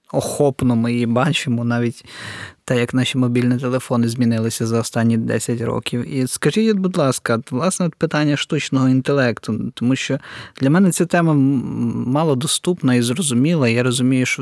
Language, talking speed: Ukrainian, 145 wpm